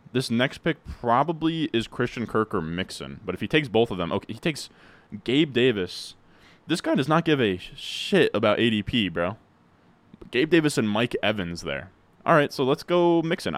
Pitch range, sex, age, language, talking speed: 110-145 Hz, male, 20-39, English, 190 wpm